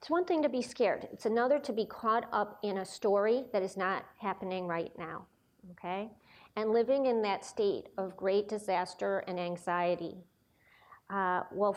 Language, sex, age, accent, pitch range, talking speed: English, female, 40-59, American, 190-235 Hz, 175 wpm